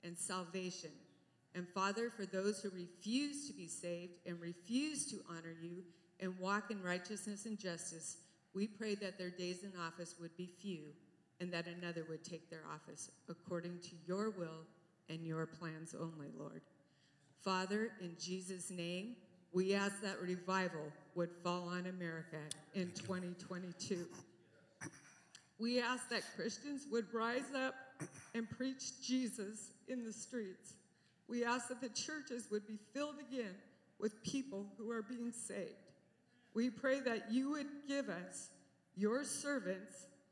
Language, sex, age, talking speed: English, female, 50-69, 145 wpm